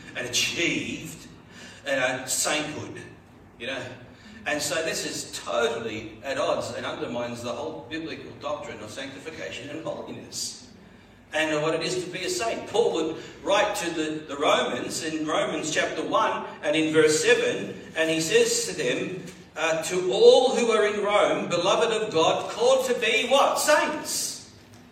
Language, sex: English, male